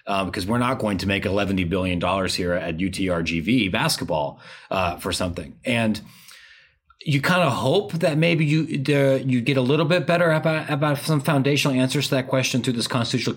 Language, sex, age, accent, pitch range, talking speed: English, male, 30-49, American, 100-135 Hz, 185 wpm